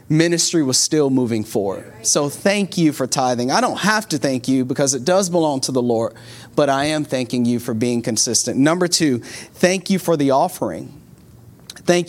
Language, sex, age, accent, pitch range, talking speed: English, male, 30-49, American, 130-170 Hz, 195 wpm